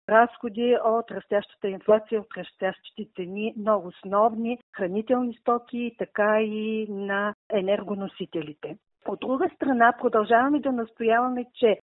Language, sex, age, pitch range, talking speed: Bulgarian, female, 50-69, 200-245 Hz, 110 wpm